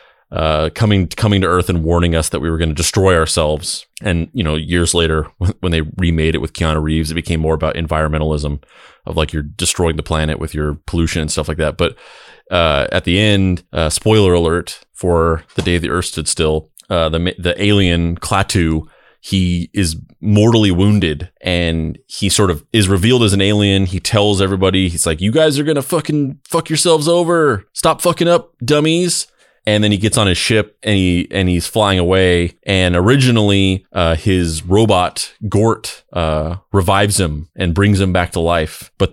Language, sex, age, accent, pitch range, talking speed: English, male, 30-49, American, 80-100 Hz, 190 wpm